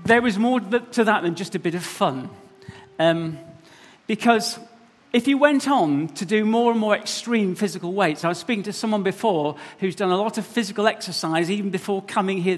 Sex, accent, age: male, British, 40-59